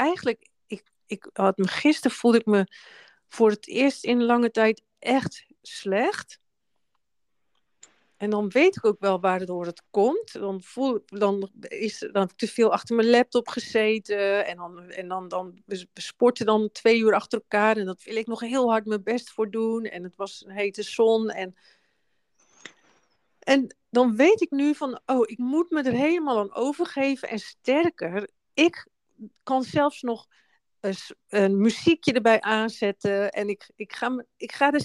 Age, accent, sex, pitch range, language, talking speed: 40-59, Dutch, female, 200-255 Hz, Dutch, 175 wpm